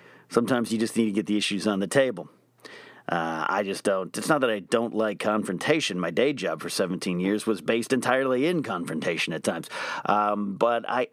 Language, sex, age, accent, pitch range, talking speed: English, male, 40-59, American, 100-125 Hz, 205 wpm